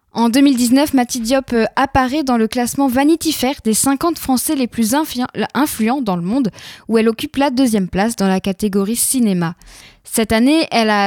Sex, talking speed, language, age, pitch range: female, 180 wpm, French, 10-29, 210-265 Hz